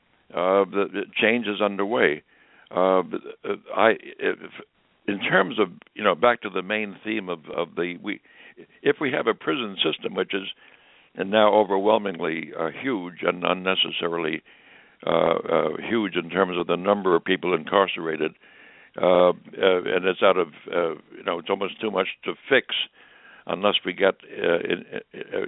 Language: English